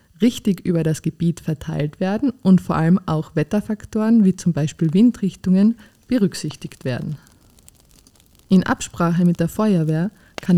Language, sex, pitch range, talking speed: English, female, 160-200 Hz, 130 wpm